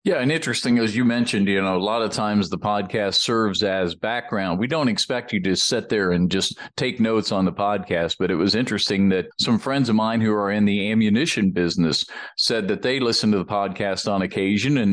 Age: 50-69